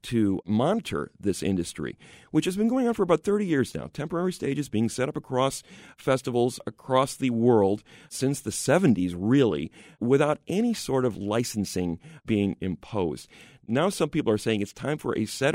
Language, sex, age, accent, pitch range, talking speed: English, male, 40-59, American, 100-135 Hz, 175 wpm